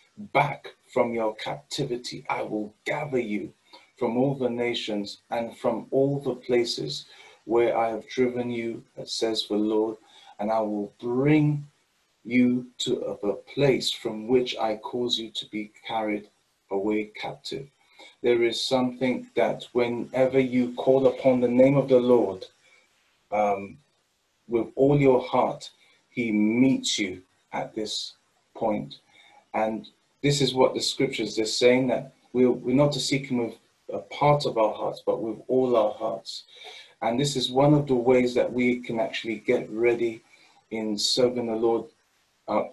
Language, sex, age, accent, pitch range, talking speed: English, male, 30-49, British, 110-130 Hz, 155 wpm